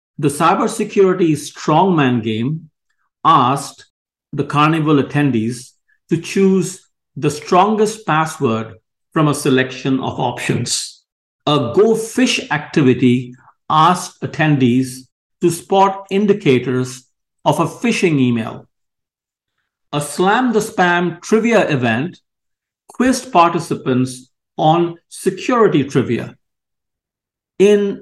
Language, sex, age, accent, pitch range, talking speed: English, male, 50-69, Indian, 130-180 Hz, 90 wpm